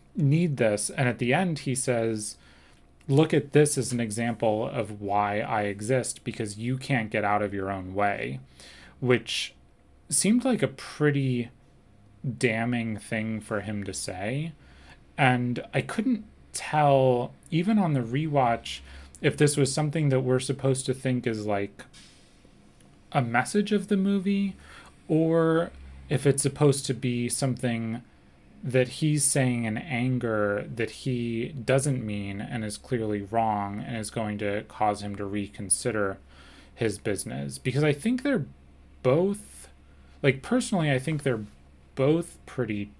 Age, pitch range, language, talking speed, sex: 30-49, 100-135 Hz, English, 145 wpm, male